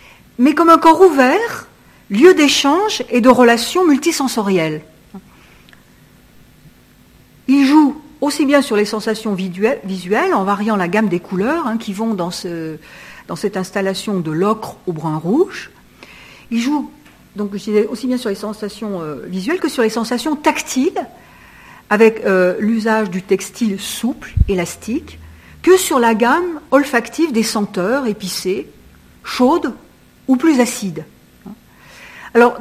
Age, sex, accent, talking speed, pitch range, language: 60-79, female, French, 130 wpm, 195-280 Hz, French